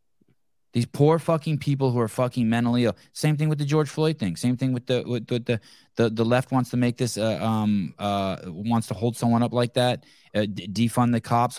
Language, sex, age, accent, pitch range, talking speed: English, male, 20-39, American, 105-125 Hz, 240 wpm